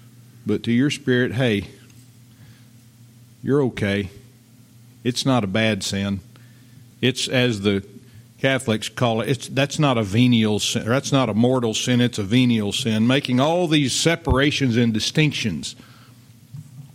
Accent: American